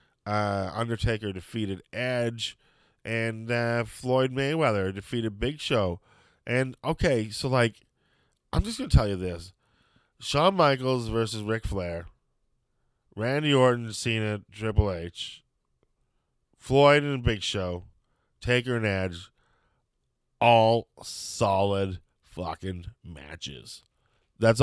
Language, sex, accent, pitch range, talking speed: English, male, American, 105-125 Hz, 105 wpm